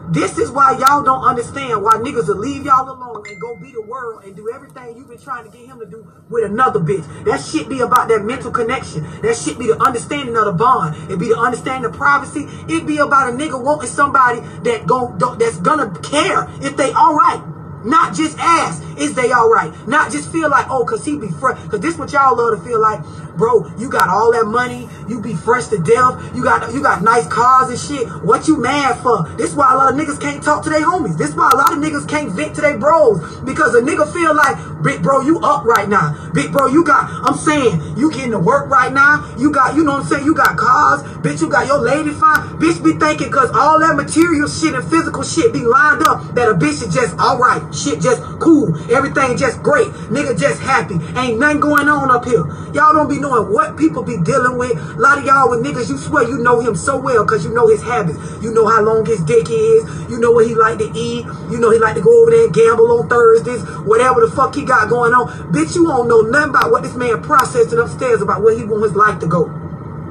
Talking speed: 250 wpm